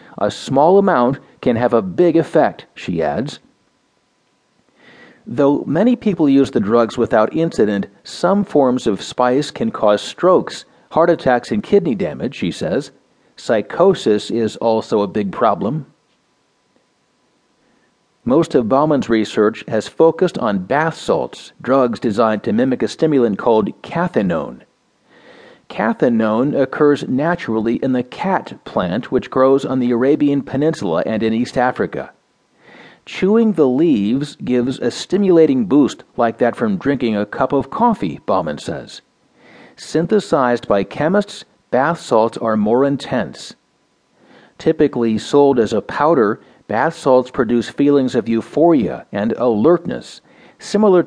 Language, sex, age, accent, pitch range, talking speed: English, male, 50-69, American, 120-185 Hz, 130 wpm